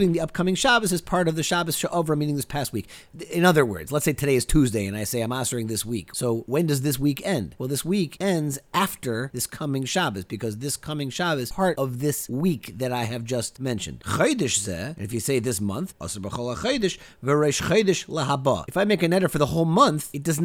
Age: 30-49